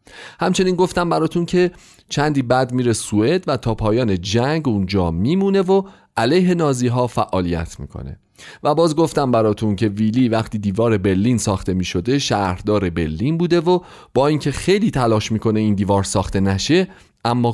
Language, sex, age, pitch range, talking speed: Persian, male, 30-49, 100-150 Hz, 155 wpm